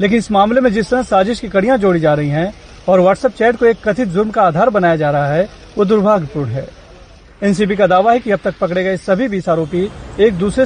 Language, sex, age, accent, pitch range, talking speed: Hindi, male, 40-59, native, 175-230 Hz, 240 wpm